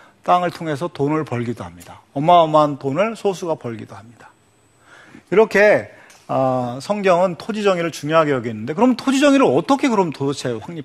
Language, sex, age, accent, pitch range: Korean, male, 40-59, native, 130-190 Hz